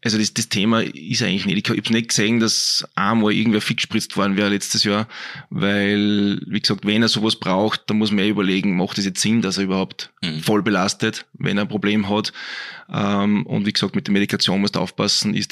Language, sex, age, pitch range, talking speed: German, male, 20-39, 100-110 Hz, 215 wpm